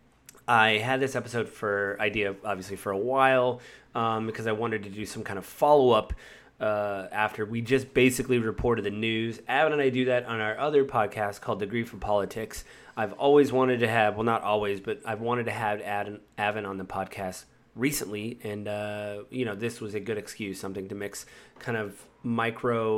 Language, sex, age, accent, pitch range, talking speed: English, male, 30-49, American, 105-130 Hz, 195 wpm